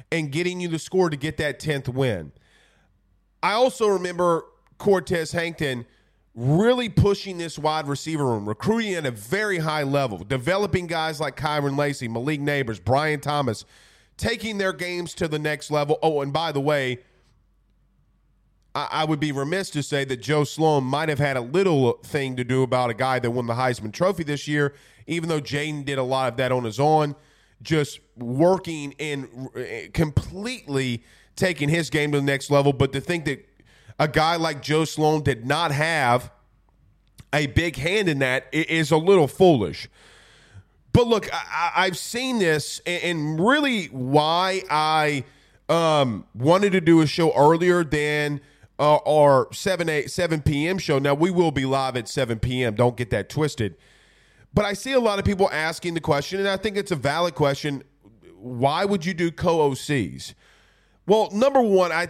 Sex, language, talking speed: male, English, 175 wpm